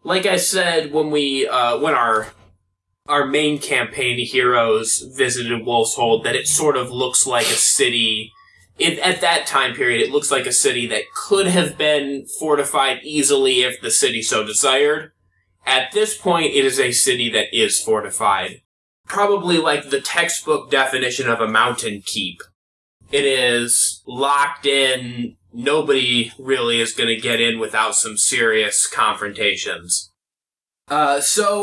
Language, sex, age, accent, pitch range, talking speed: English, male, 20-39, American, 120-165 Hz, 150 wpm